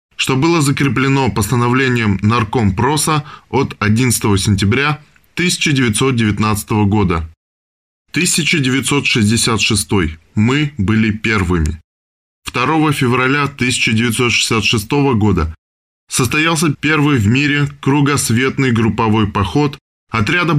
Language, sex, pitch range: Russian, male, 105-140 Hz